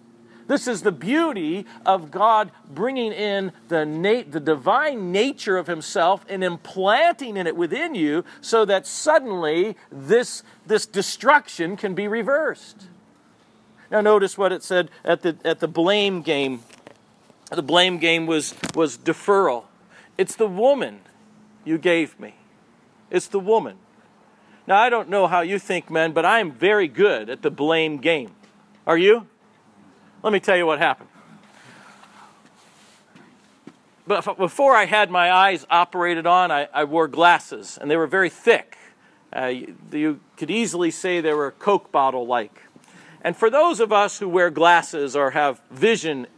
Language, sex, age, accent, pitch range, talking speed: English, male, 50-69, American, 165-220 Hz, 150 wpm